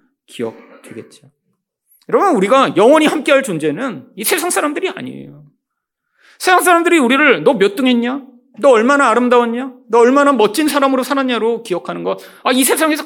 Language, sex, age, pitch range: Korean, male, 40-59, 180-300 Hz